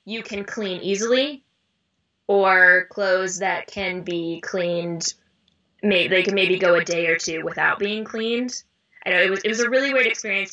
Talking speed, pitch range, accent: 175 wpm, 180-235 Hz, American